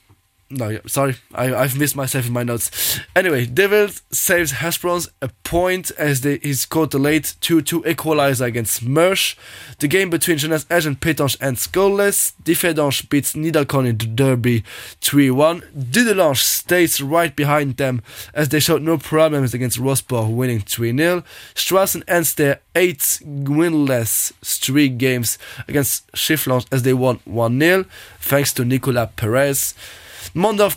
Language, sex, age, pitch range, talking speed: English, male, 10-29, 125-160 Hz, 140 wpm